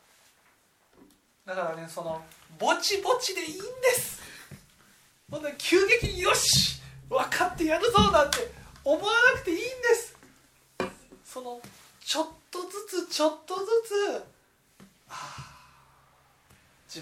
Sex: male